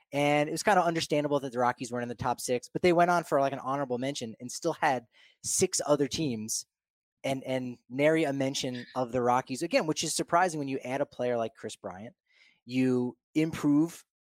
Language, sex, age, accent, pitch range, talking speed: English, male, 20-39, American, 125-150 Hz, 215 wpm